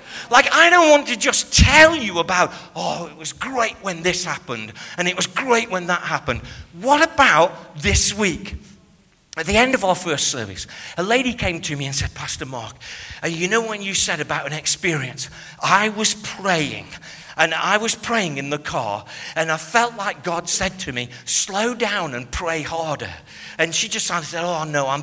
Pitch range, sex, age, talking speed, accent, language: 160-225 Hz, male, 50-69, 195 wpm, British, English